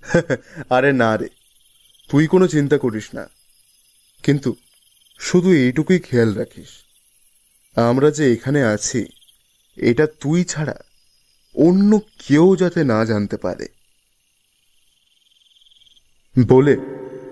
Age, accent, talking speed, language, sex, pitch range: 30-49, native, 90 wpm, Bengali, male, 115-165 Hz